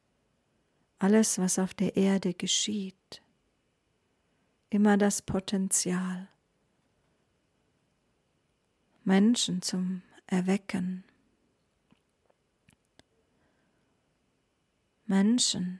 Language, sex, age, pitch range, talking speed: German, female, 40-59, 185-205 Hz, 50 wpm